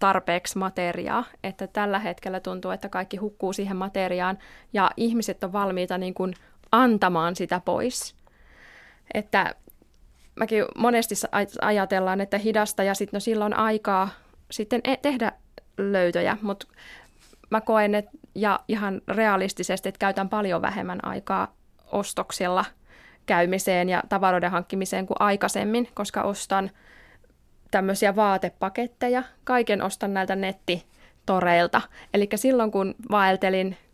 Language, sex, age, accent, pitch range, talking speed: Finnish, female, 20-39, native, 185-215 Hz, 115 wpm